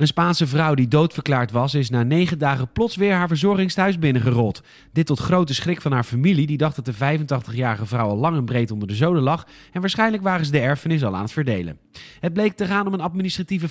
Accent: Dutch